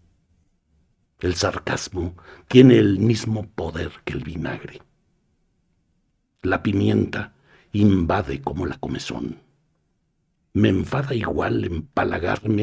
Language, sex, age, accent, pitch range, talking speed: Spanish, male, 60-79, Mexican, 90-135 Hz, 90 wpm